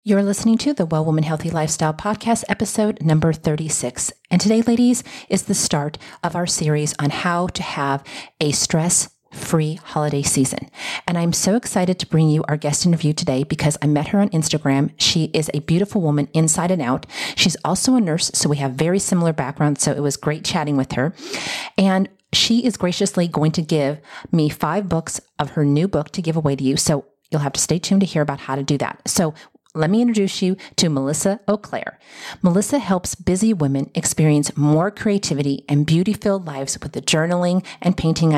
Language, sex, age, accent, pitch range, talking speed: English, female, 40-59, American, 150-190 Hz, 200 wpm